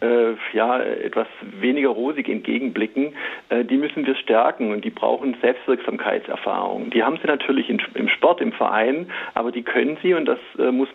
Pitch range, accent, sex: 120-170 Hz, German, male